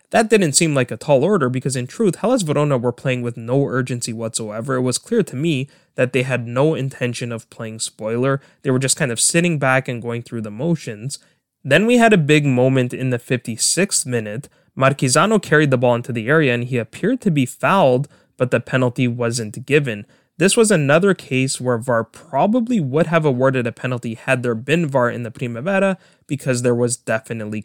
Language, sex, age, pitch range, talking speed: English, male, 20-39, 120-155 Hz, 205 wpm